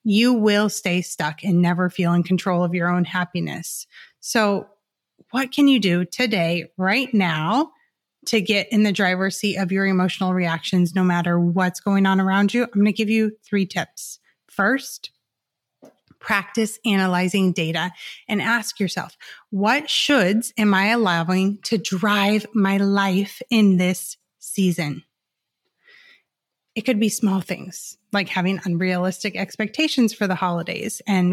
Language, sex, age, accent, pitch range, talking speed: English, female, 30-49, American, 185-235 Hz, 150 wpm